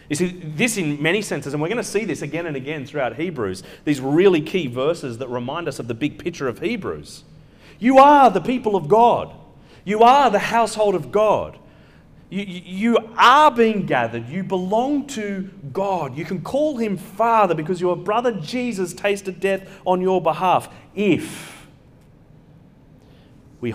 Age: 30-49